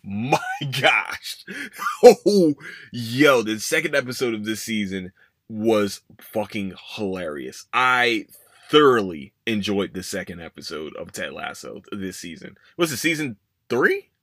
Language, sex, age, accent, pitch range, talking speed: English, male, 20-39, American, 100-140 Hz, 120 wpm